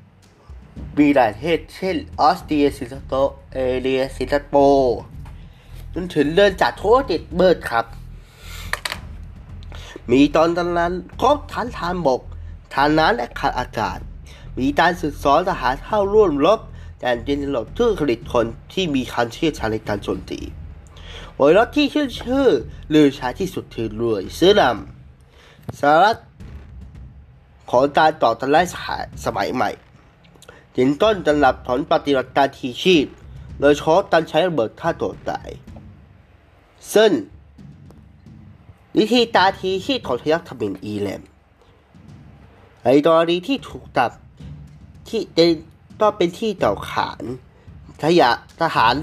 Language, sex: Thai, male